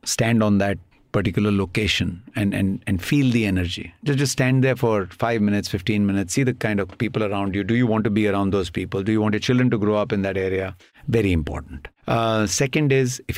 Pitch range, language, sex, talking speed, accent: 100-130 Hz, English, male, 235 wpm, Indian